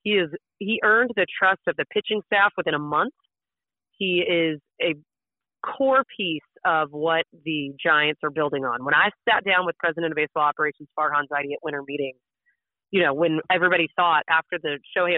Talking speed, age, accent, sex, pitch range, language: 185 wpm, 30-49, American, female, 155-220 Hz, English